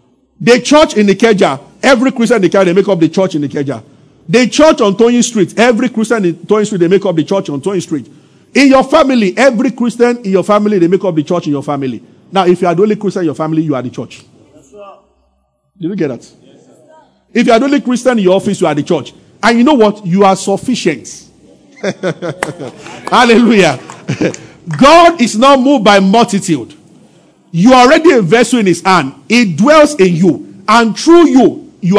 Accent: Nigerian